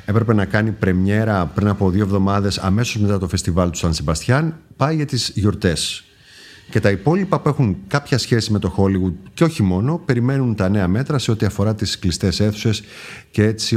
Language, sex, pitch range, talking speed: Greek, male, 90-120 Hz, 190 wpm